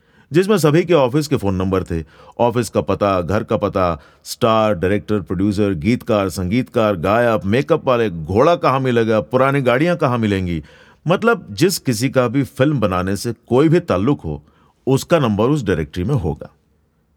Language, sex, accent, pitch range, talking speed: Hindi, male, native, 85-135 Hz, 165 wpm